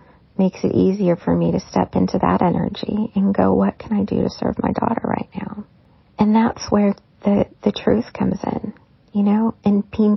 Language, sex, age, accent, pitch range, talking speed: English, female, 40-59, American, 170-210 Hz, 200 wpm